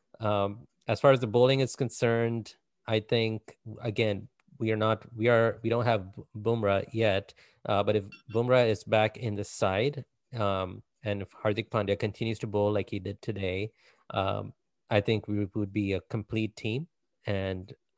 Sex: male